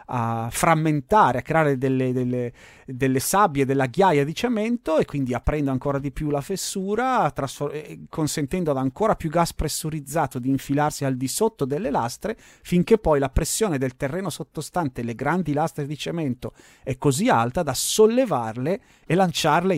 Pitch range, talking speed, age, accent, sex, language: 130-170 Hz, 155 wpm, 30-49, native, male, Italian